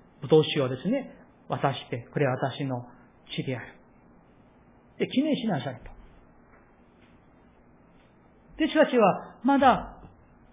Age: 40-59